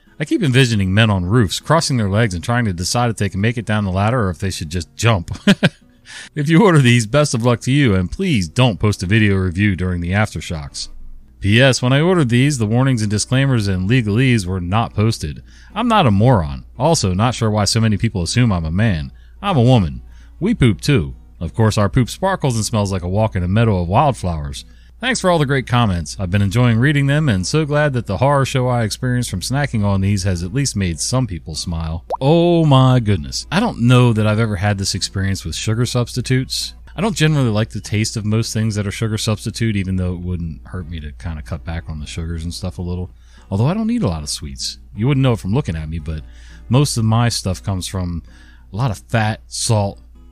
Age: 30-49